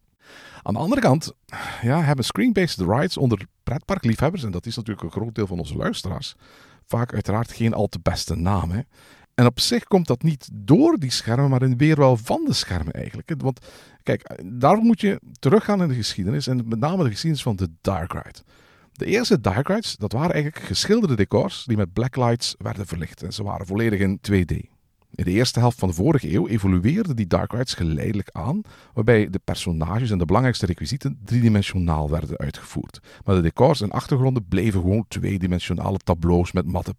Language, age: Dutch, 50-69